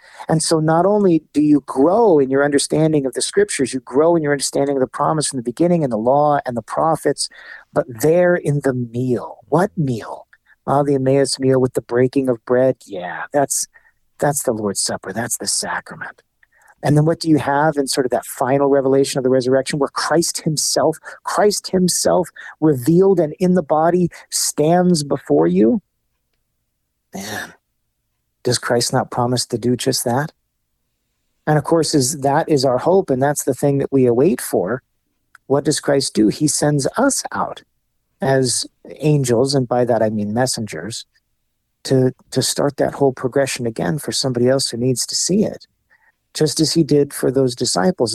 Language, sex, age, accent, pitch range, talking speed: English, male, 40-59, American, 130-160 Hz, 180 wpm